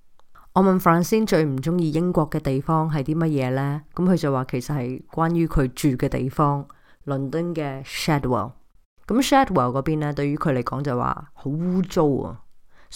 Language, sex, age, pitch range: Chinese, female, 20-39, 135-170 Hz